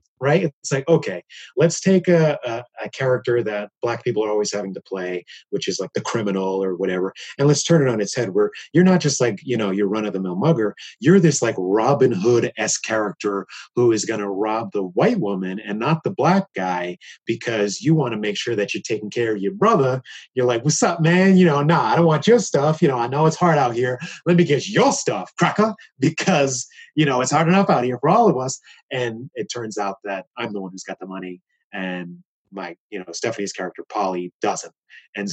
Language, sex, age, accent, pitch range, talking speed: English, male, 30-49, American, 100-150 Hz, 235 wpm